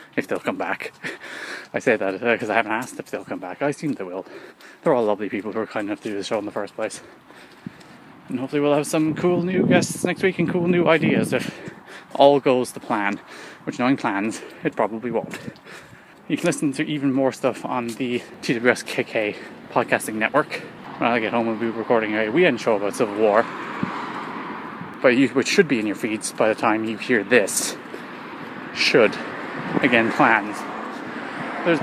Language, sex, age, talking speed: English, male, 20-39, 200 wpm